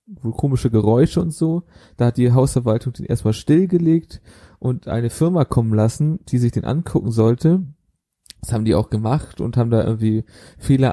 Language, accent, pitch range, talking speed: German, German, 115-150 Hz, 170 wpm